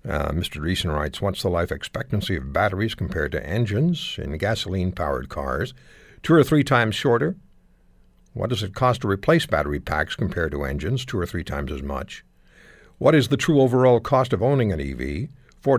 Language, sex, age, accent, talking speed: English, male, 60-79, American, 185 wpm